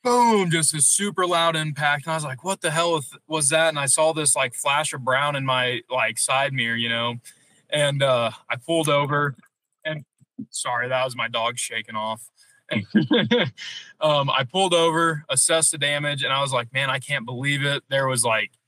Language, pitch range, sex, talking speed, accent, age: English, 125-150 Hz, male, 200 wpm, American, 20-39